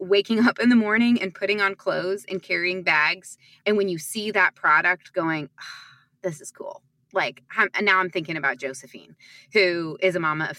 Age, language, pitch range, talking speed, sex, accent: 20-39, English, 155-200 Hz, 185 wpm, female, American